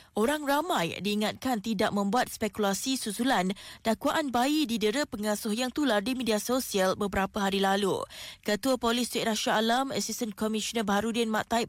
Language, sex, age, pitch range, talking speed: Malay, female, 20-39, 210-250 Hz, 150 wpm